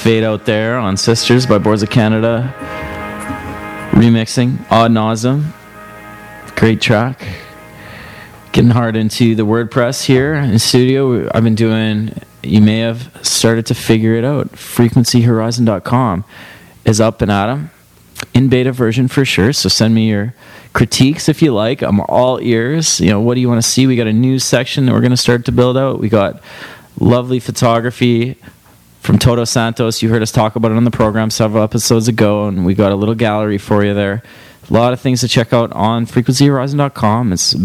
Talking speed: 185 wpm